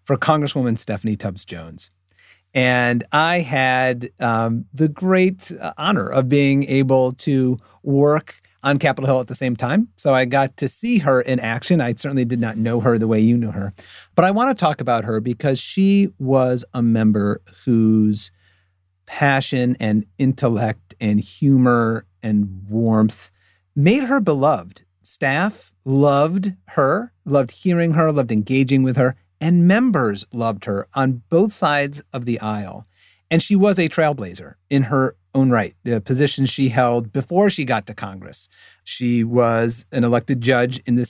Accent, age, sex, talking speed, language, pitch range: American, 40-59, male, 160 wpm, English, 115-140 Hz